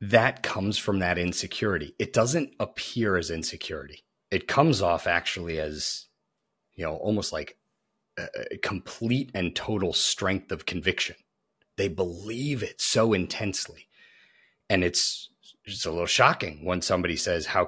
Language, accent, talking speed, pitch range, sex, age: English, American, 140 wpm, 85-115 Hz, male, 30-49